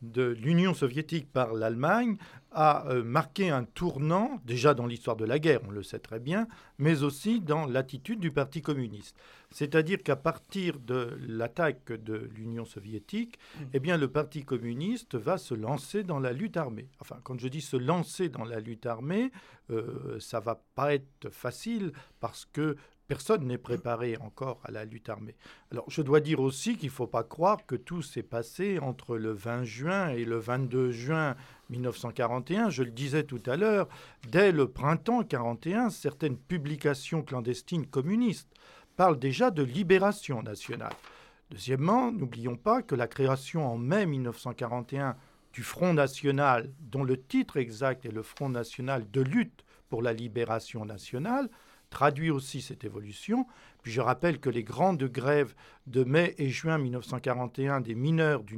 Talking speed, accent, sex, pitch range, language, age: 165 wpm, French, male, 120-160 Hz, French, 50-69